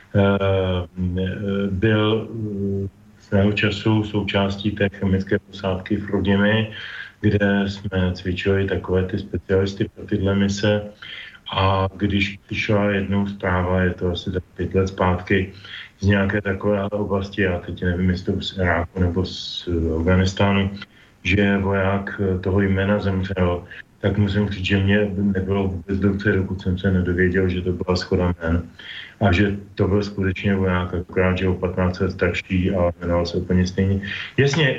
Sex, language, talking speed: male, Slovak, 140 wpm